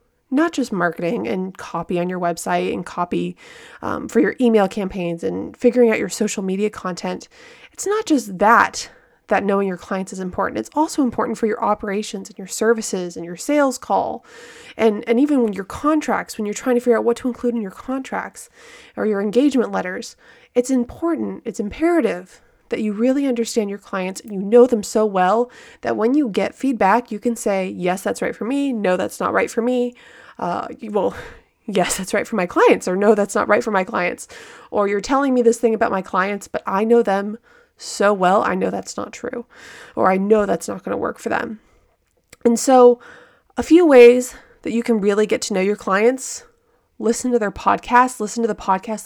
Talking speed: 210 wpm